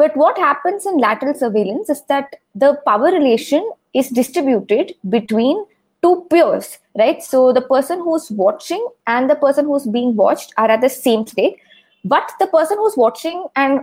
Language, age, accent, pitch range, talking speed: English, 20-39, Indian, 245-315 Hz, 170 wpm